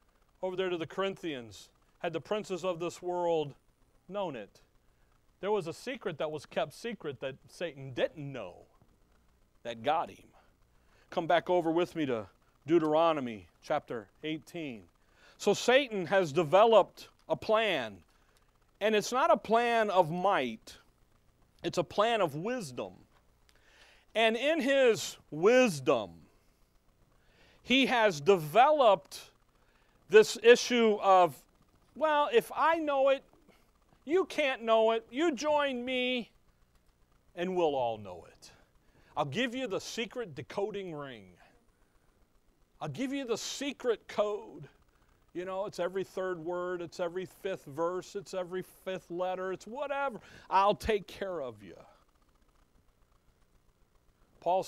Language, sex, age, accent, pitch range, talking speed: English, male, 40-59, American, 130-215 Hz, 130 wpm